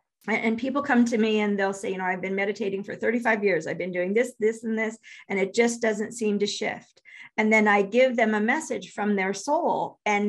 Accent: American